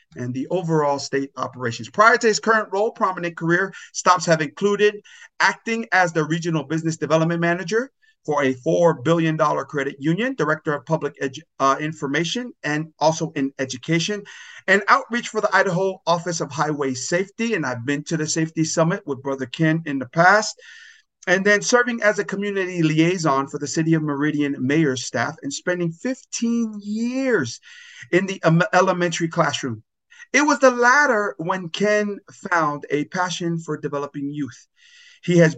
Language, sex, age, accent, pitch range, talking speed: English, male, 50-69, American, 145-210 Hz, 160 wpm